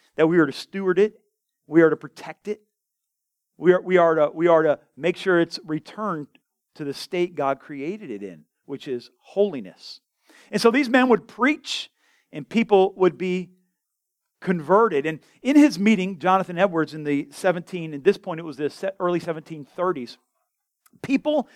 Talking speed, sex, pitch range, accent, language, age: 175 wpm, male, 160-210 Hz, American, English, 40-59